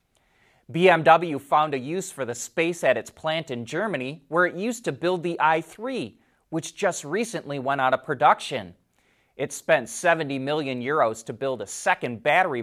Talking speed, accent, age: 170 wpm, American, 30-49